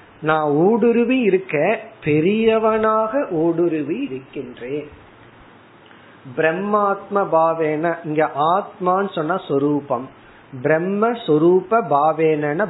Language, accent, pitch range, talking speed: Tamil, native, 145-195 Hz, 65 wpm